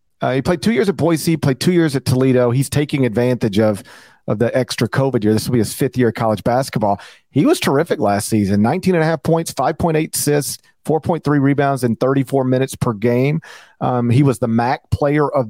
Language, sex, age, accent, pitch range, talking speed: English, male, 40-59, American, 120-150 Hz, 235 wpm